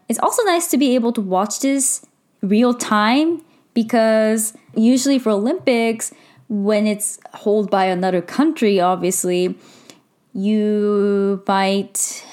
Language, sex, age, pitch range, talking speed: English, female, 10-29, 180-230 Hz, 115 wpm